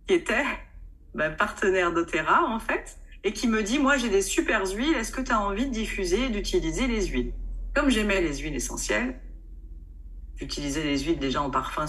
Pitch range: 155-260 Hz